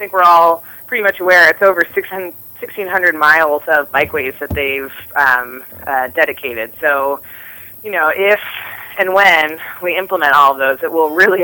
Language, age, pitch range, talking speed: English, 30-49, 135-165 Hz, 170 wpm